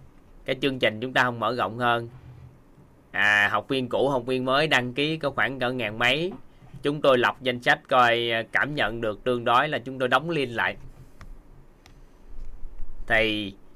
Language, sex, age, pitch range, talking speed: Vietnamese, male, 20-39, 115-145 Hz, 180 wpm